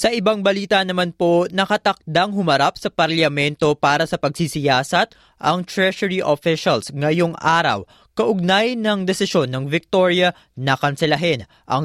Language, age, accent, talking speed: Filipino, 20-39, native, 125 wpm